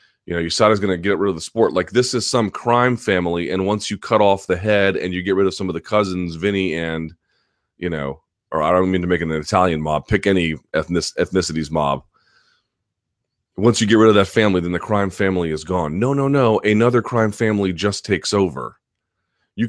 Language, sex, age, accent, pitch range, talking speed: English, male, 30-49, American, 85-110 Hz, 225 wpm